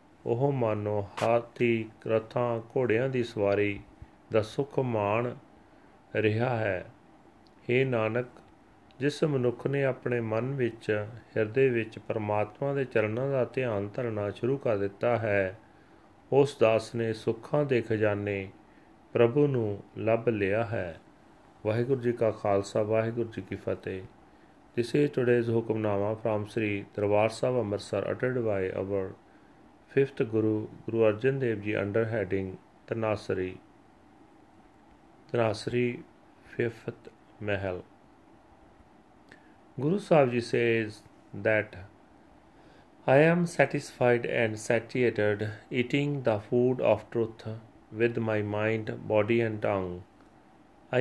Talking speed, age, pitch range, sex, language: 110 wpm, 30-49, 105-125 Hz, male, Punjabi